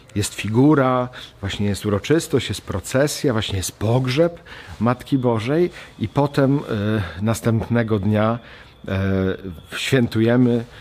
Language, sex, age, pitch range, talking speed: Polish, male, 50-69, 95-120 Hz, 95 wpm